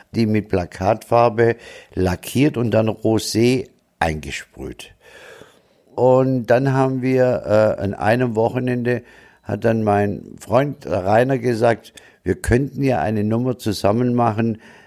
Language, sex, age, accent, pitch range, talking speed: German, male, 60-79, German, 100-130 Hz, 115 wpm